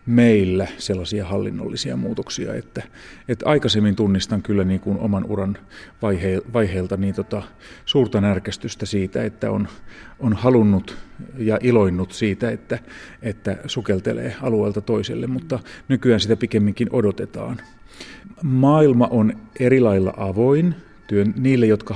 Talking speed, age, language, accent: 110 wpm, 30-49, Finnish, native